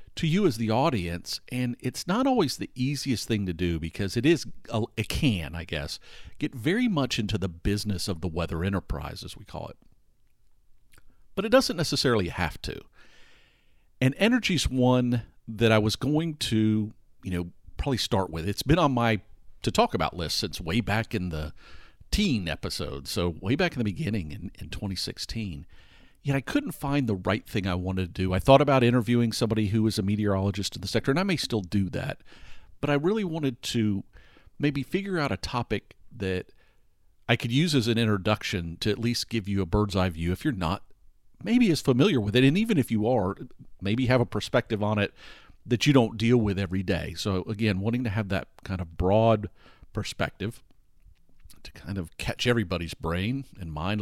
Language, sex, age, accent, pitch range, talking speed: English, male, 50-69, American, 95-125 Hz, 200 wpm